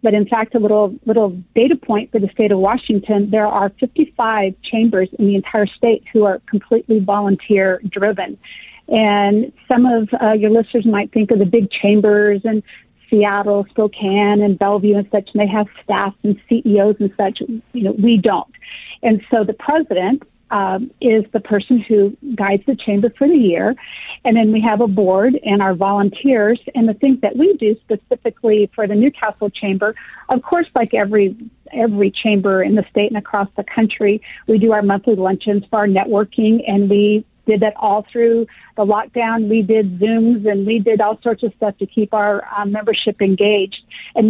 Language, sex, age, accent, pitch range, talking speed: English, female, 40-59, American, 205-230 Hz, 185 wpm